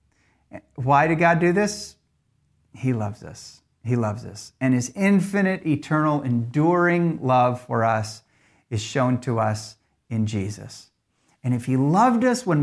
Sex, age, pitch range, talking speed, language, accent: male, 50-69, 125-170 Hz, 145 wpm, English, American